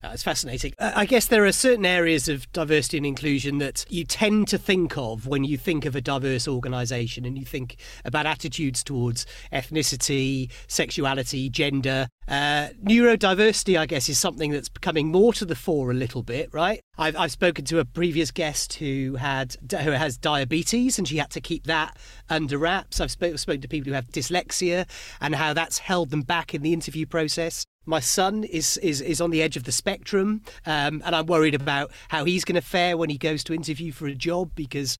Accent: British